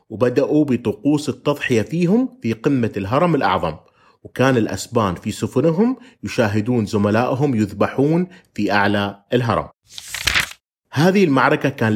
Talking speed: 105 wpm